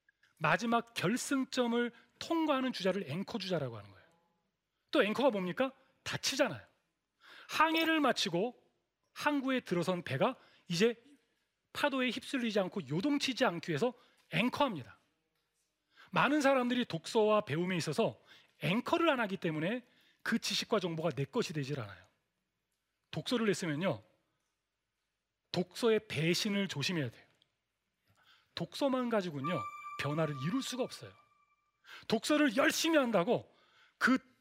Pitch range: 155-255 Hz